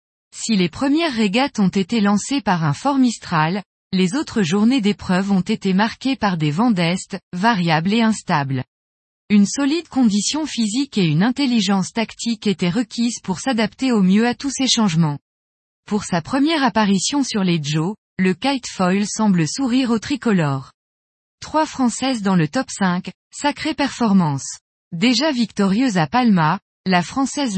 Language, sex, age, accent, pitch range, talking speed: French, female, 20-39, French, 180-250 Hz, 150 wpm